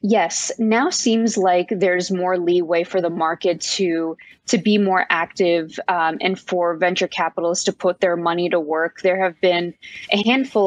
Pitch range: 175-195 Hz